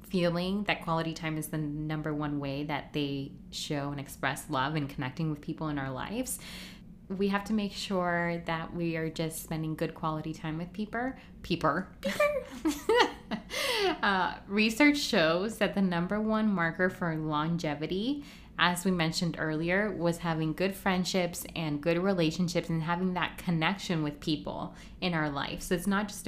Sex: female